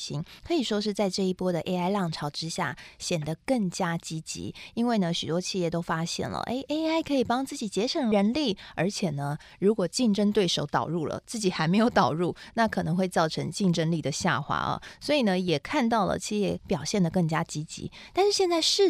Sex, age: female, 20-39